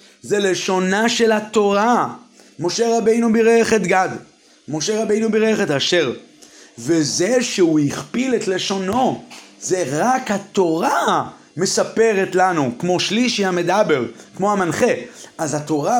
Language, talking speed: Hebrew, 115 wpm